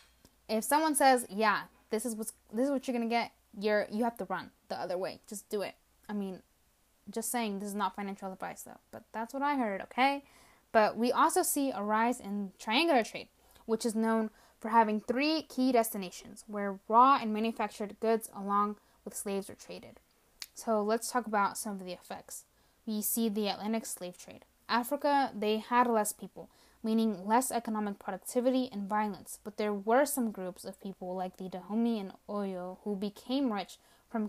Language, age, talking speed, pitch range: English, 10-29, 185 wpm, 200-235 Hz